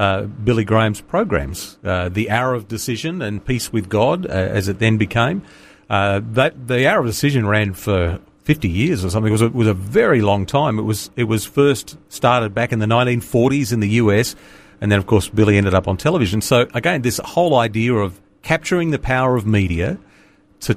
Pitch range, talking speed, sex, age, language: 100-130 Hz, 210 wpm, male, 40-59, English